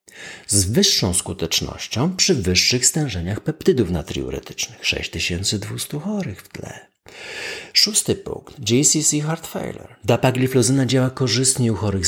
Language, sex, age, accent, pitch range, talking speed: Polish, male, 50-69, native, 95-145 Hz, 105 wpm